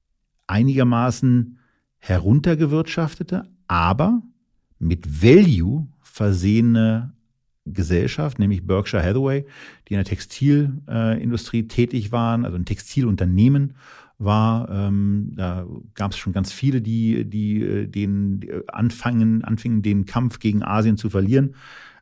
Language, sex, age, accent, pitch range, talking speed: German, male, 40-59, German, 100-125 Hz, 100 wpm